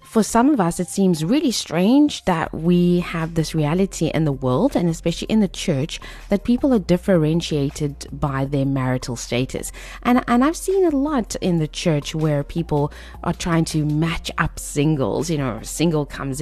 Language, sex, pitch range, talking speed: English, female, 145-185 Hz, 185 wpm